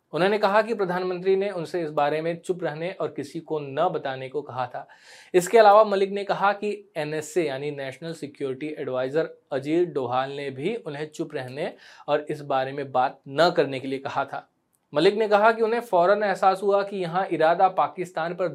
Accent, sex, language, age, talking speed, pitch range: native, male, Hindi, 20-39, 195 wpm, 135-170 Hz